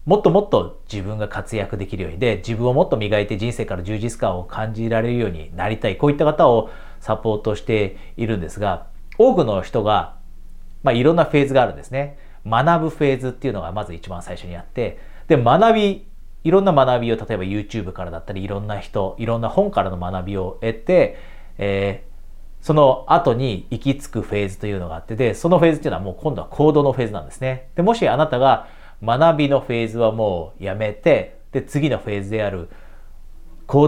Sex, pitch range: male, 95-130 Hz